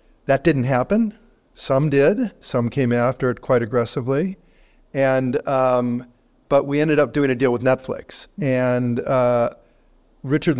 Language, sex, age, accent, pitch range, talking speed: English, male, 50-69, American, 115-135 Hz, 140 wpm